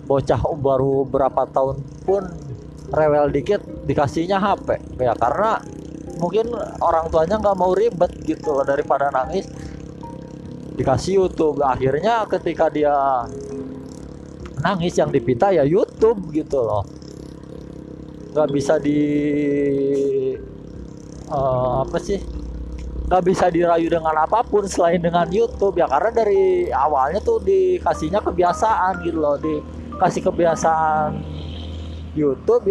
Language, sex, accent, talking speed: Indonesian, male, native, 110 wpm